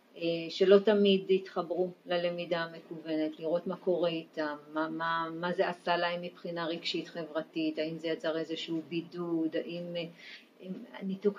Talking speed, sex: 140 wpm, female